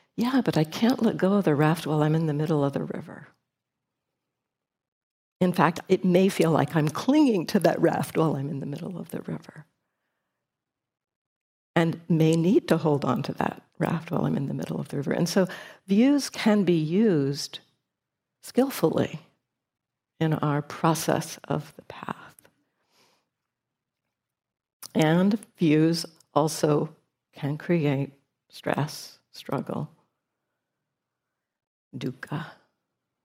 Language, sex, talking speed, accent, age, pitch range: English, female, 135 wpm, American, 60-79, 150-185 Hz